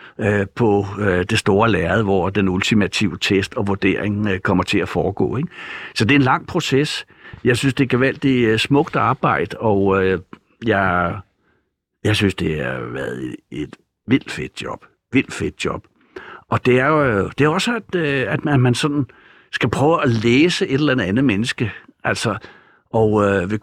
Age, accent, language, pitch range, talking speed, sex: 60-79, native, Danish, 100-130 Hz, 165 wpm, male